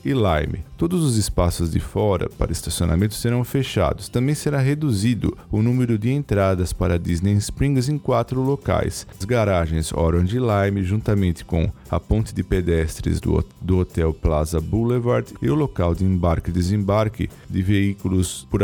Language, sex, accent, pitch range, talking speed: Portuguese, male, Brazilian, 85-115 Hz, 160 wpm